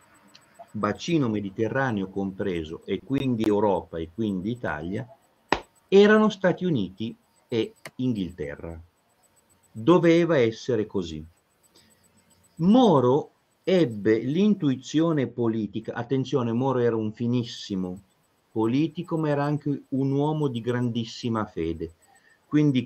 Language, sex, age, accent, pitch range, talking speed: Italian, male, 50-69, native, 105-150 Hz, 95 wpm